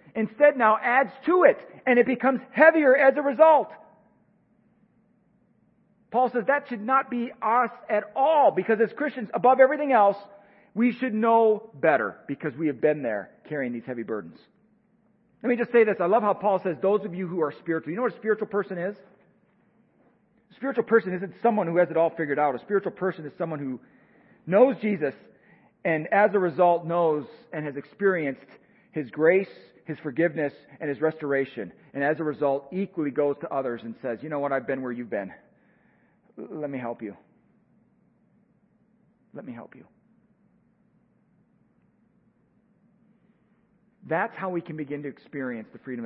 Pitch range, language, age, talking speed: 155-225 Hz, English, 40-59, 175 wpm